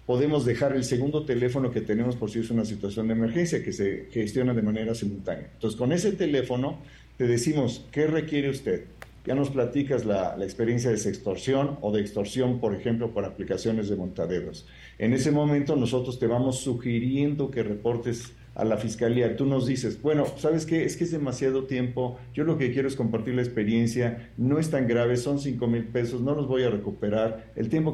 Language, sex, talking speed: Spanish, male, 200 wpm